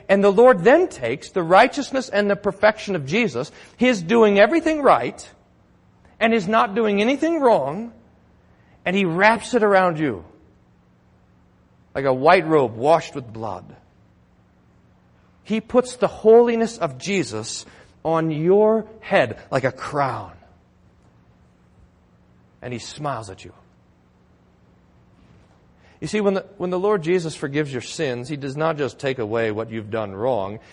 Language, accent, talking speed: English, American, 145 wpm